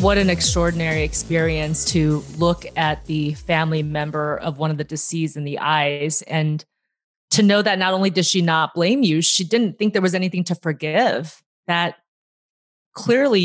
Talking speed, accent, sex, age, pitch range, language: 175 wpm, American, female, 30-49, 160-200 Hz, English